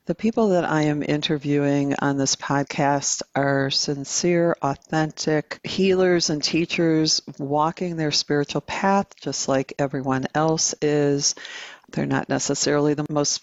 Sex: female